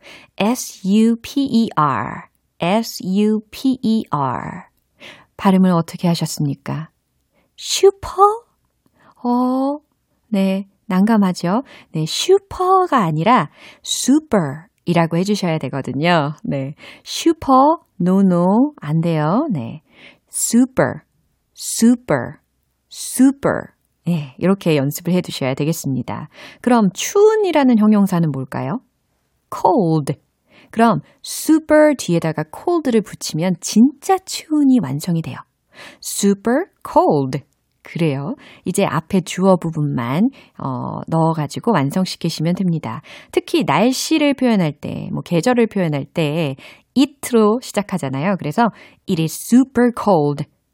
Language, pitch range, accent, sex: Korean, 160-255 Hz, native, female